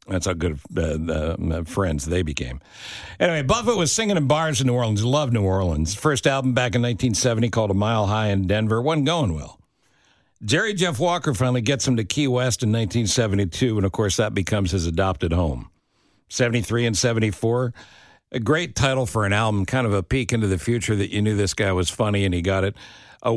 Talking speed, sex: 210 wpm, male